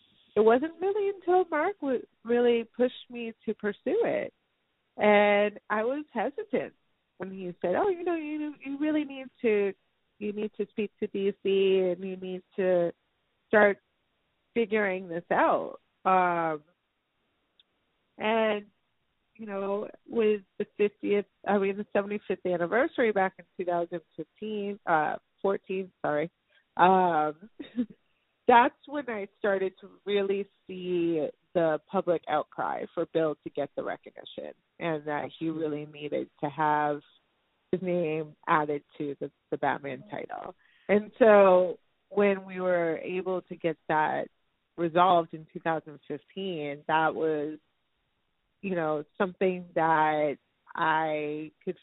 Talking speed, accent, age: 130 wpm, American, 30-49